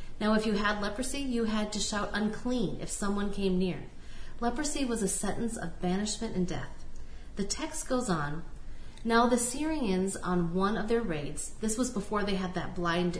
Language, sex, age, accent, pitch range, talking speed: English, female, 40-59, American, 180-235 Hz, 185 wpm